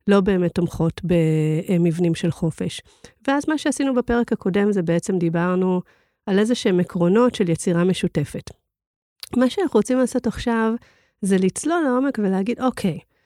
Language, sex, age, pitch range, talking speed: Hebrew, female, 40-59, 175-220 Hz, 140 wpm